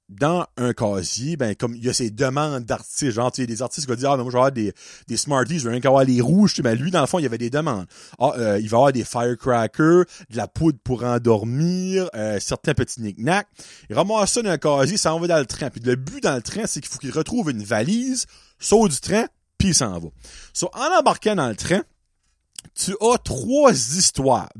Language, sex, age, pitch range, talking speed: French, male, 30-49, 120-190 Hz, 250 wpm